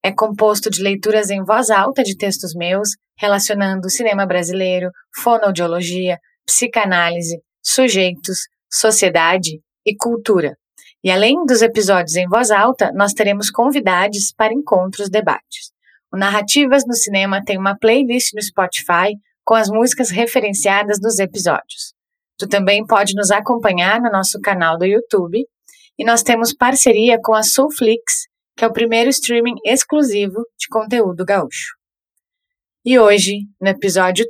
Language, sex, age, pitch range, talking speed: Portuguese, female, 20-39, 190-235 Hz, 135 wpm